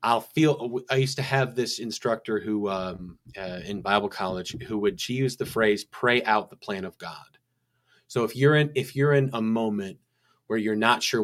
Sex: male